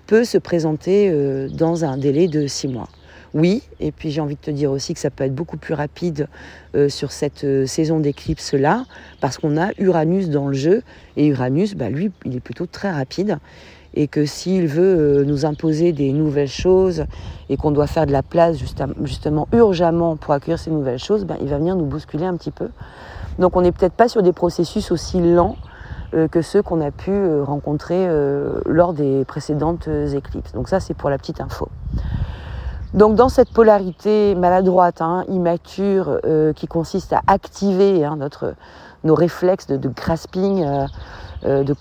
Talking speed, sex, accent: 180 wpm, female, French